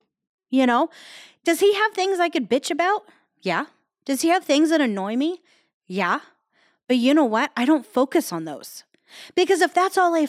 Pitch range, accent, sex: 215-310 Hz, American, female